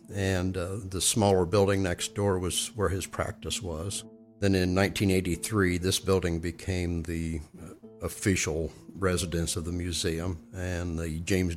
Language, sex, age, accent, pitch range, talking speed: English, male, 60-79, American, 90-110 Hz, 145 wpm